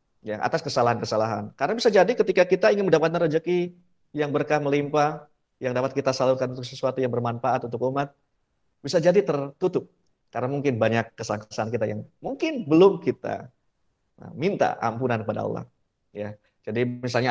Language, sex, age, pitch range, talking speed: Indonesian, male, 20-39, 115-150 Hz, 150 wpm